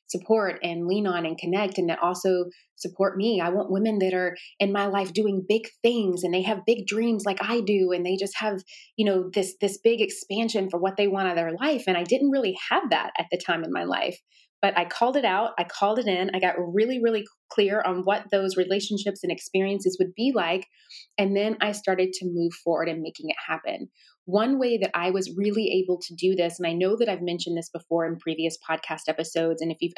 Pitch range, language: 170-205 Hz, English